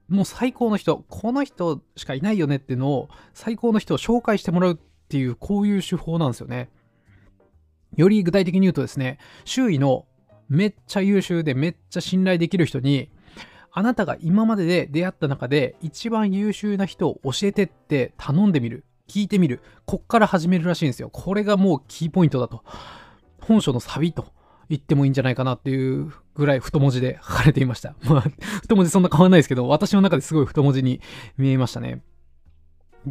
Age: 20-39